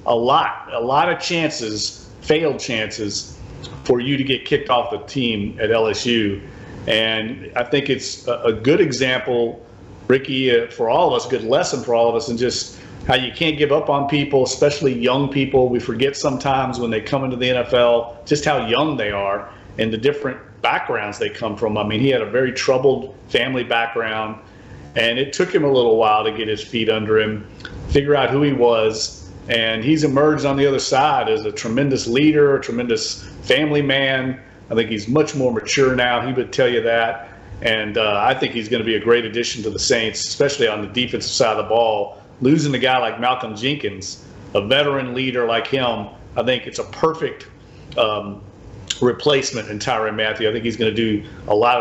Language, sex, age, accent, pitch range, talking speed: English, male, 40-59, American, 110-135 Hz, 200 wpm